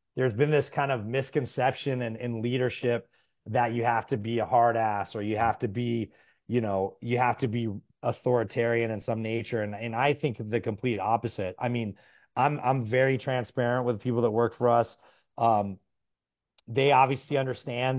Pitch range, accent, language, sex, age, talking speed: 115-130 Hz, American, English, male, 30-49, 185 wpm